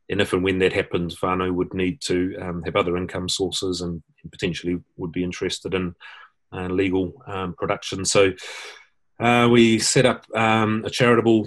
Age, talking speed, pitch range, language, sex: 30-49, 180 wpm, 90-100 Hz, English, male